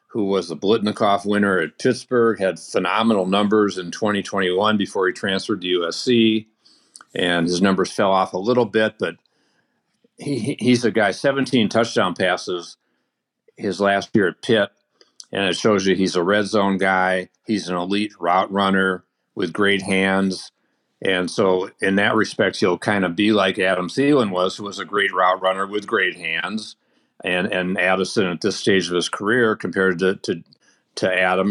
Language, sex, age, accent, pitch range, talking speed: English, male, 50-69, American, 95-115 Hz, 175 wpm